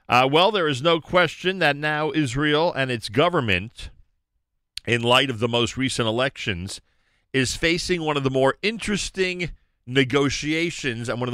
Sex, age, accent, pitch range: male, 40-59, American, 105-140 Hz